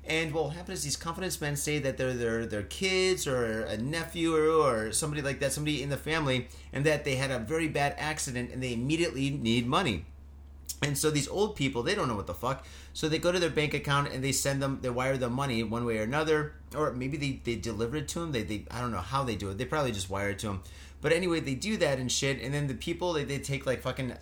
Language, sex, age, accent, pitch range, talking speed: English, male, 30-49, American, 120-155 Hz, 270 wpm